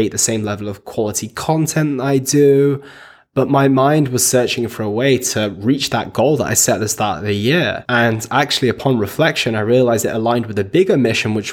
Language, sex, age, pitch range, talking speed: English, male, 20-39, 110-135 Hz, 220 wpm